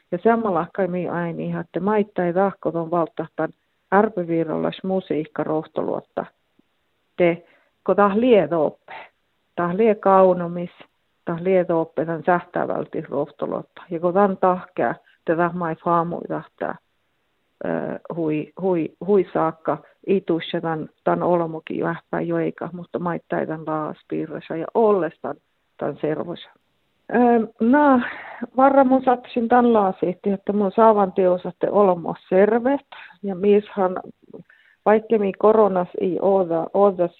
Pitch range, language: 170-205 Hz, Finnish